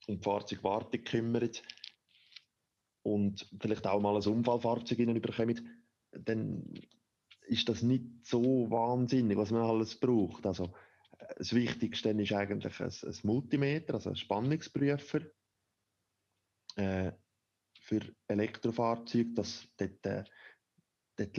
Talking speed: 95 wpm